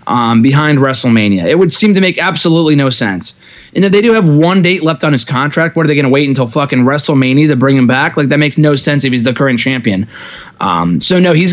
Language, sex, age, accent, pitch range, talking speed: English, male, 20-39, American, 135-170 Hz, 255 wpm